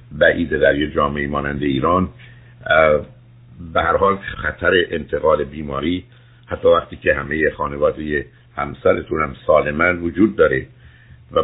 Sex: male